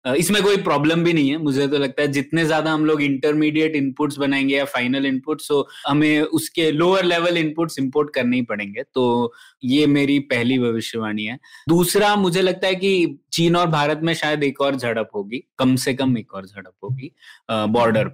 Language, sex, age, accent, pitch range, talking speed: Hindi, male, 20-39, native, 135-165 Hz, 190 wpm